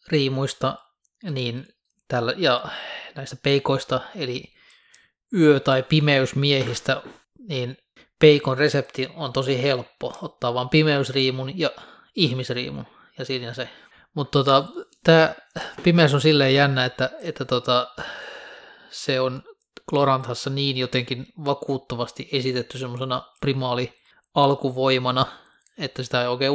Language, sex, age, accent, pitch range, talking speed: Finnish, male, 20-39, native, 125-140 Hz, 95 wpm